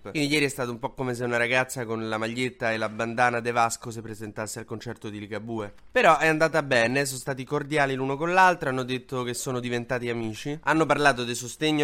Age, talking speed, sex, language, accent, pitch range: 20-39, 225 wpm, male, Italian, native, 115-150 Hz